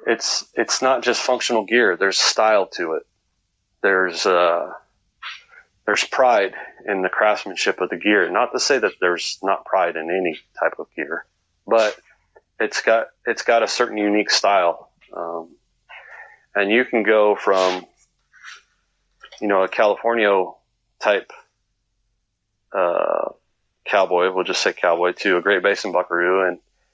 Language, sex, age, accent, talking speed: English, male, 30-49, American, 145 wpm